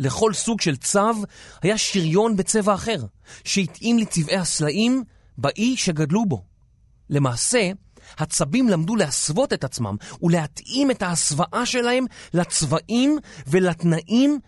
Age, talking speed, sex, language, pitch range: 30-49, 110 wpm, male, Hebrew, 130-205 Hz